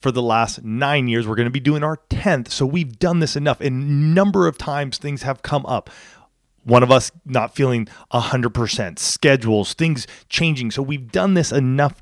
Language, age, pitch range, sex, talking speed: English, 30-49, 115-145 Hz, male, 200 wpm